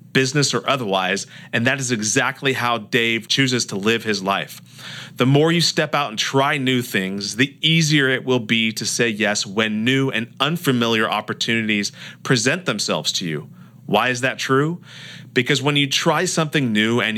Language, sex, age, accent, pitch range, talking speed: English, male, 30-49, American, 110-145 Hz, 180 wpm